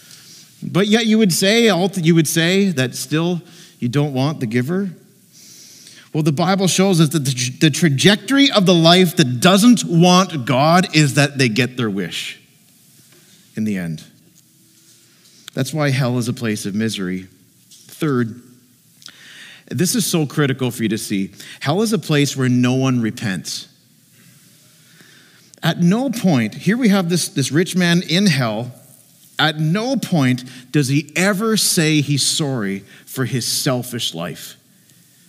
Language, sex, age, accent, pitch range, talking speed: English, male, 50-69, American, 135-195 Hz, 150 wpm